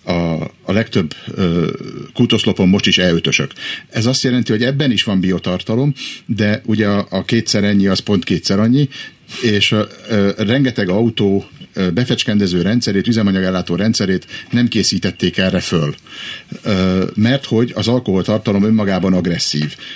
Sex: male